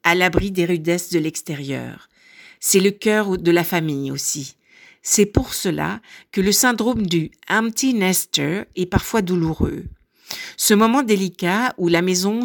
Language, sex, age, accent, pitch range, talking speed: French, female, 50-69, French, 165-210 Hz, 160 wpm